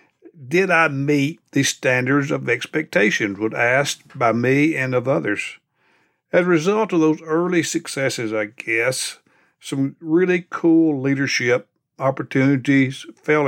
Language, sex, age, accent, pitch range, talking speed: English, male, 60-79, American, 120-150 Hz, 130 wpm